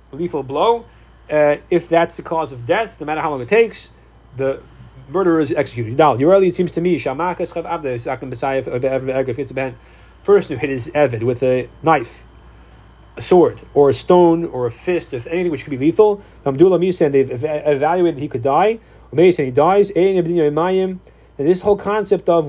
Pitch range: 150-185 Hz